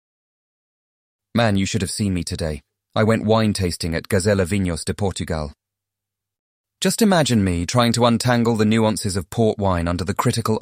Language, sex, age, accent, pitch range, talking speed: English, male, 30-49, British, 95-110 Hz, 165 wpm